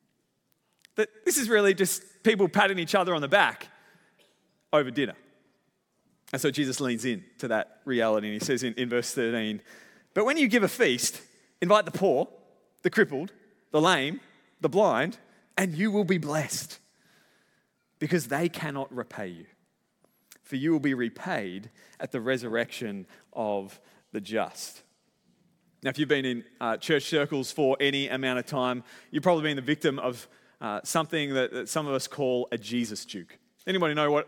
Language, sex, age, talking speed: English, male, 30-49, 170 wpm